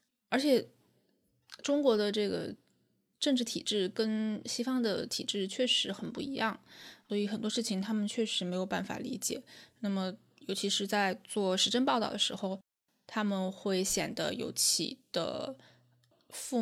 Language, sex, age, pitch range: Chinese, female, 20-39, 195-245 Hz